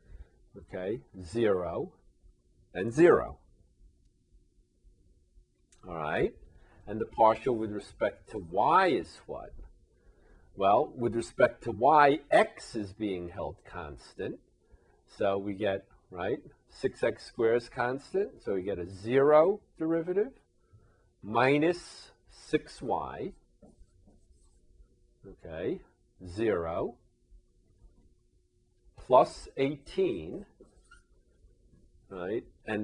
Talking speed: 85 wpm